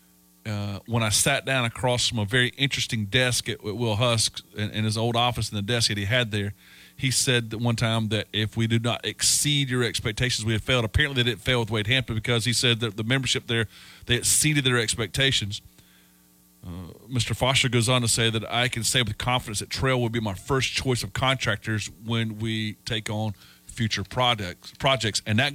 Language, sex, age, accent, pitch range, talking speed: English, male, 40-59, American, 95-125 Hz, 215 wpm